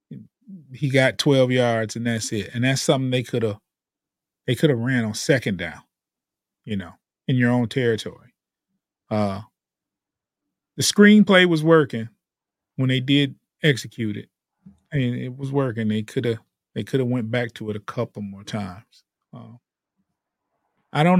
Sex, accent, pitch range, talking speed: male, American, 110-135 Hz, 160 wpm